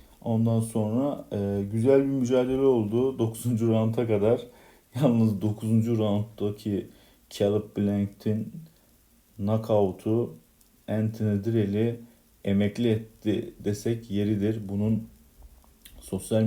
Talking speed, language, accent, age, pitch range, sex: 85 wpm, Turkish, native, 50-69, 100-115 Hz, male